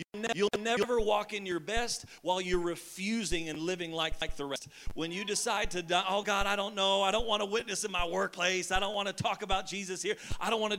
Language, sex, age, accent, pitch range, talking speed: English, male, 40-59, American, 160-215 Hz, 245 wpm